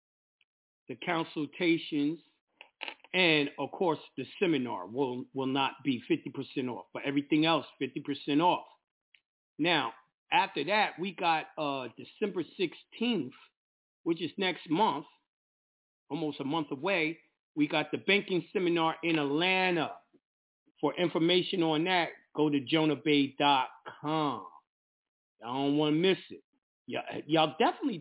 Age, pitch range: 40-59, 150-195 Hz